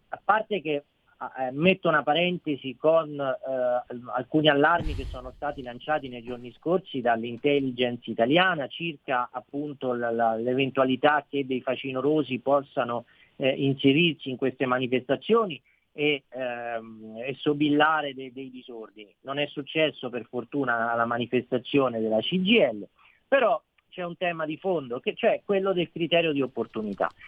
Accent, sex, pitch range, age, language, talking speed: native, male, 130-180 Hz, 40-59, Italian, 140 wpm